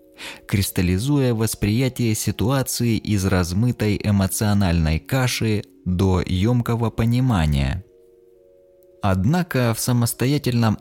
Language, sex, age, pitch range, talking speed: Russian, male, 20-39, 95-130 Hz, 70 wpm